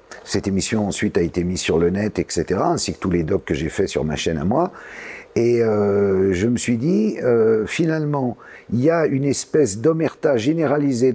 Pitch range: 115-160 Hz